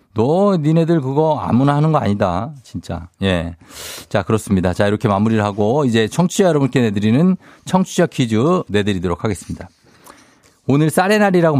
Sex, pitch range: male, 105-145 Hz